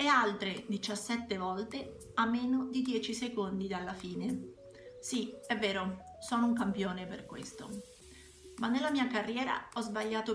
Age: 40-59